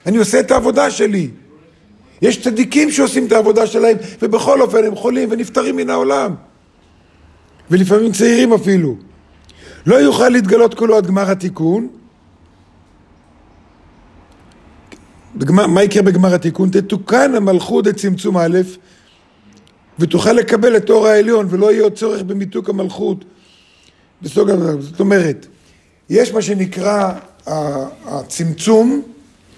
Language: Hebrew